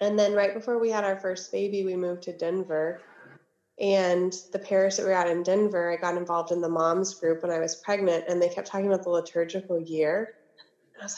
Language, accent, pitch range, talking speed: English, American, 175-210 Hz, 225 wpm